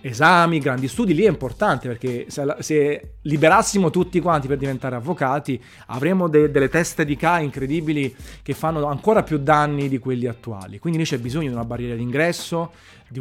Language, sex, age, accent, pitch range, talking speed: Italian, male, 30-49, native, 110-160 Hz, 175 wpm